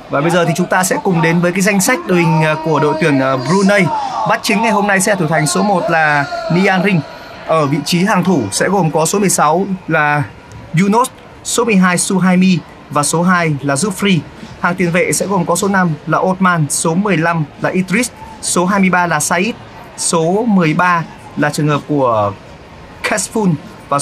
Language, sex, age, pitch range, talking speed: Vietnamese, male, 30-49, 160-200 Hz, 195 wpm